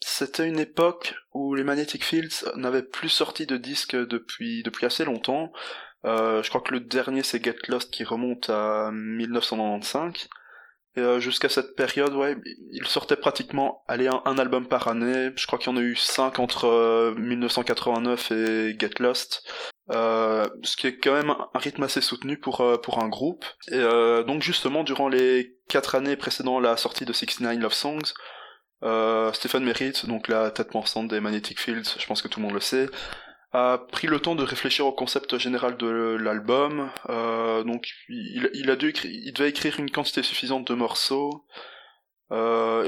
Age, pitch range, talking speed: 20-39, 115-135 Hz, 180 wpm